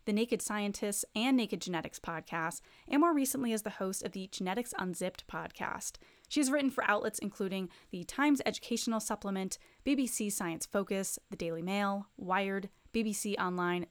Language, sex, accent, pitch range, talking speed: English, female, American, 180-235 Hz, 155 wpm